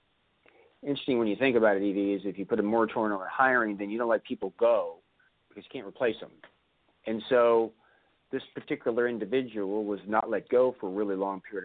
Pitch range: 100-130 Hz